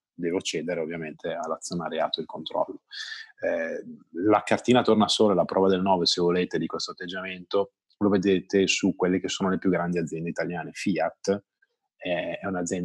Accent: native